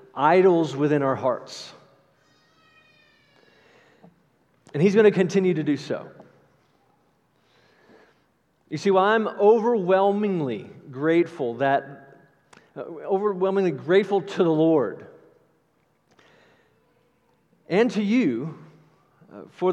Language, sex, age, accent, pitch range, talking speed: English, male, 40-59, American, 145-195 Hz, 90 wpm